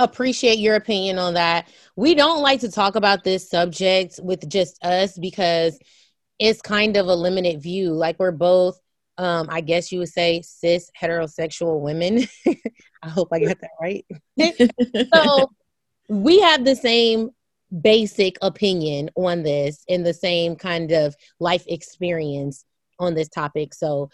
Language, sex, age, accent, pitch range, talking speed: English, female, 20-39, American, 170-220 Hz, 150 wpm